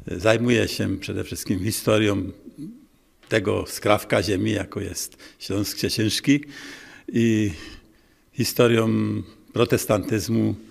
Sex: male